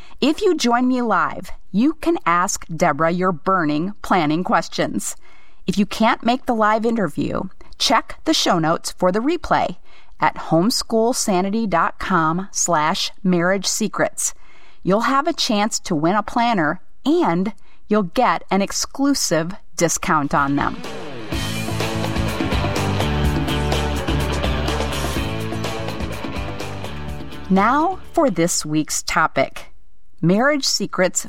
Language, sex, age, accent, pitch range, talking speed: English, female, 40-59, American, 155-225 Hz, 105 wpm